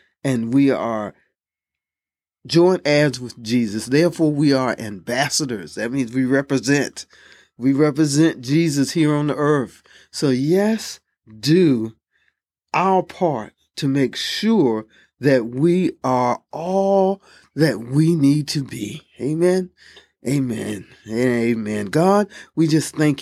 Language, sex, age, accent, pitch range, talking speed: English, male, 40-59, American, 120-160 Hz, 120 wpm